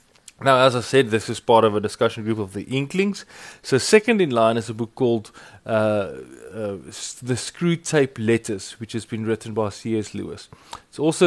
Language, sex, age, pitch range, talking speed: English, male, 20-39, 110-135 Hz, 190 wpm